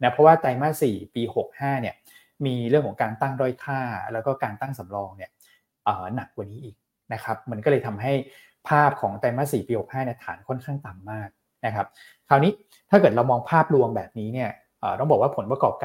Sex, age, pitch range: male, 20-39, 110-140 Hz